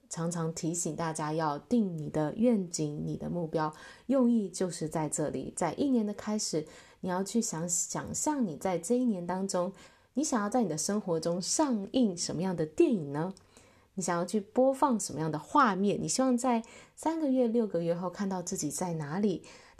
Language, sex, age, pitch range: Chinese, female, 20-39, 165-235 Hz